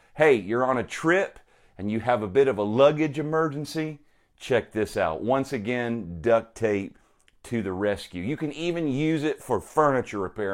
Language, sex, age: English, male, 40-59